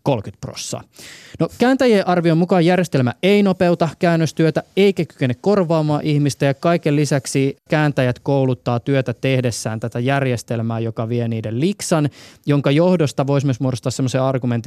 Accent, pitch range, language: native, 120-155 Hz, Finnish